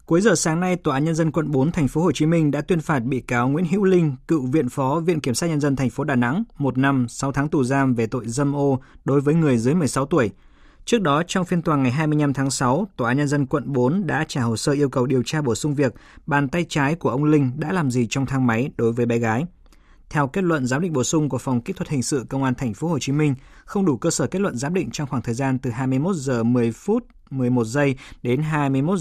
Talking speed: 275 wpm